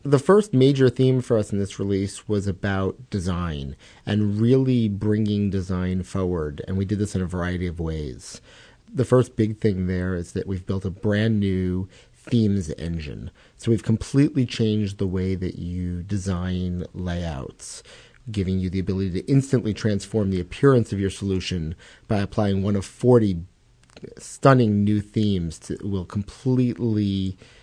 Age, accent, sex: 40-59, American, male